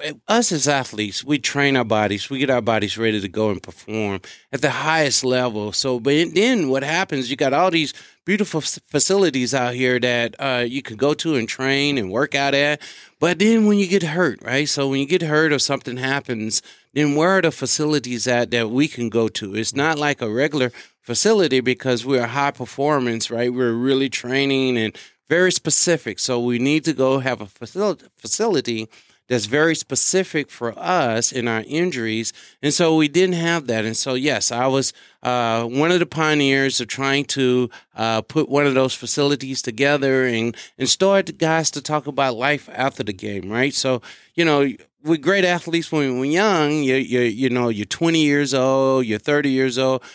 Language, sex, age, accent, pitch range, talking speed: English, male, 30-49, American, 120-155 Hz, 195 wpm